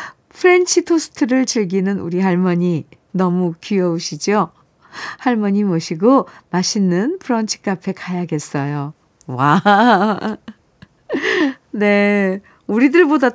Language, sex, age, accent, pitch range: Korean, female, 50-69, native, 175-245 Hz